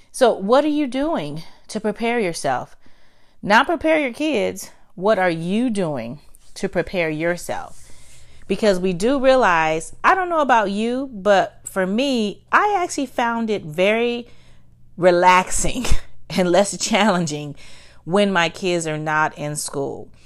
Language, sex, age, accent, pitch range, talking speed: English, female, 30-49, American, 165-220 Hz, 140 wpm